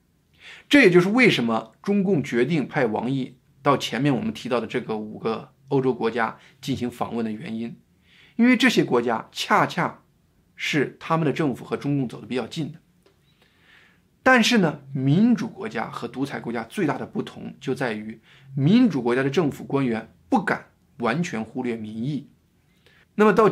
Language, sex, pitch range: Chinese, male, 120-175 Hz